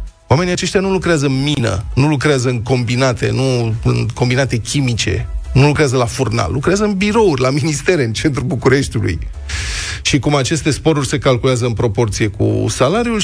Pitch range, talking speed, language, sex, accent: 115-165 Hz, 165 wpm, Romanian, male, native